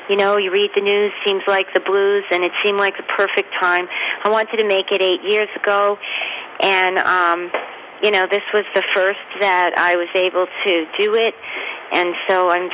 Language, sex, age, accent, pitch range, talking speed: English, female, 40-59, American, 175-205 Hz, 205 wpm